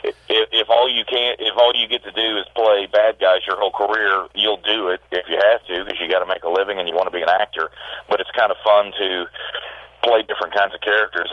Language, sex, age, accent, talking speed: English, male, 40-59, American, 265 wpm